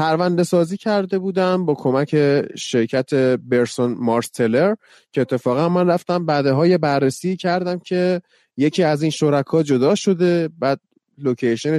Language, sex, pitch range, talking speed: Persian, male, 135-195 Hz, 135 wpm